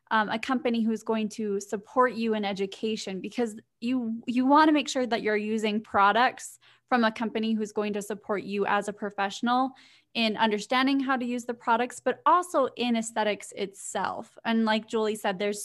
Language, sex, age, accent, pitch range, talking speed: English, female, 20-39, American, 210-245 Hz, 190 wpm